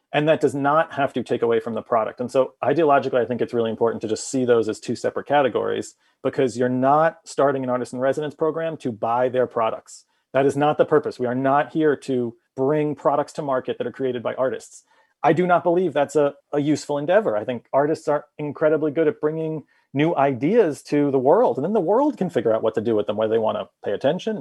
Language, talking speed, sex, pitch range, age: English, 245 wpm, male, 125-165 Hz, 40-59